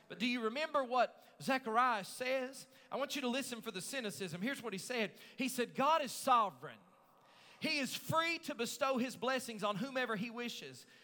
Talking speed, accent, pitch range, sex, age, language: 190 wpm, American, 175-255 Hz, male, 40-59, English